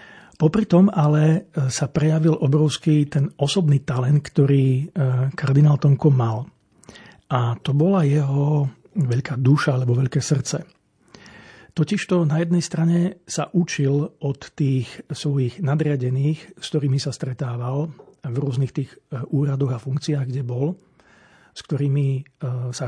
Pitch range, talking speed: 135-150 Hz, 125 wpm